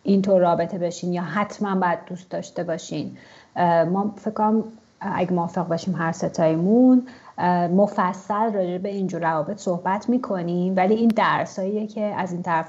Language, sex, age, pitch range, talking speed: English, female, 30-49, 170-200 Hz, 140 wpm